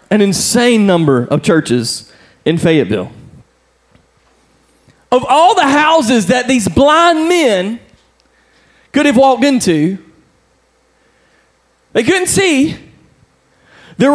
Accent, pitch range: American, 205-270 Hz